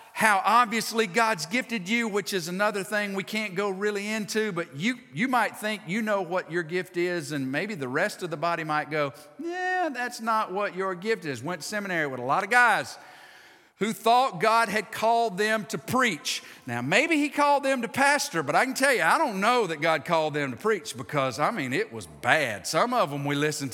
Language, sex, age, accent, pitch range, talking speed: English, male, 50-69, American, 175-250 Hz, 225 wpm